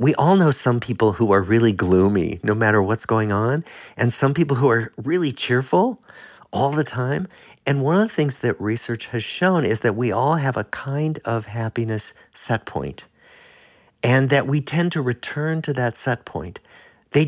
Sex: male